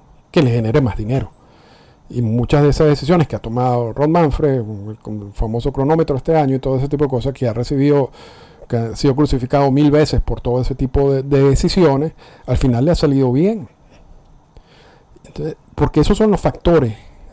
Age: 50-69